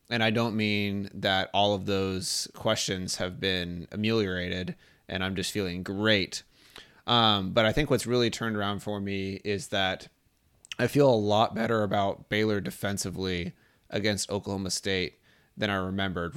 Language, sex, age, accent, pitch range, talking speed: English, male, 20-39, American, 100-115 Hz, 160 wpm